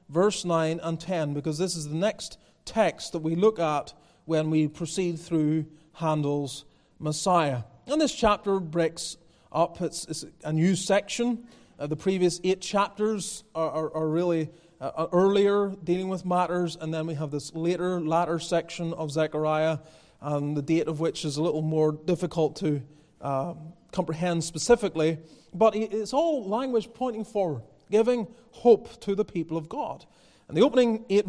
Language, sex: English, male